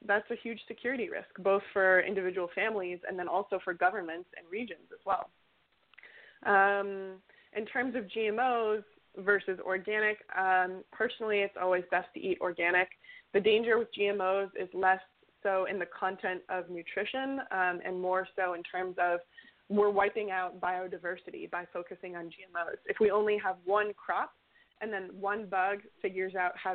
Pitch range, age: 185-210 Hz, 20-39